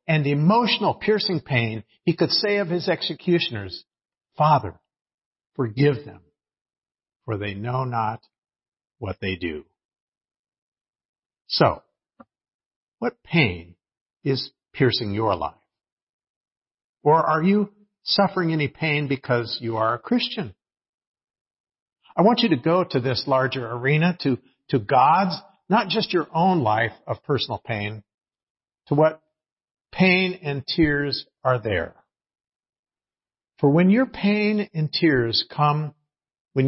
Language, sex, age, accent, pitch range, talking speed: English, male, 50-69, American, 115-175 Hz, 120 wpm